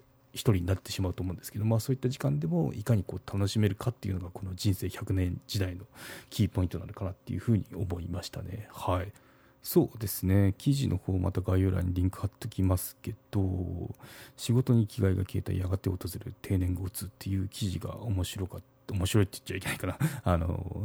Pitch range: 95-120 Hz